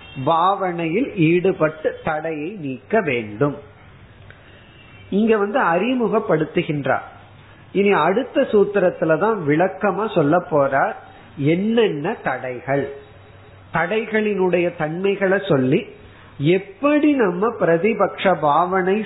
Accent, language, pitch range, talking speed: native, Tamil, 145-205 Hz, 70 wpm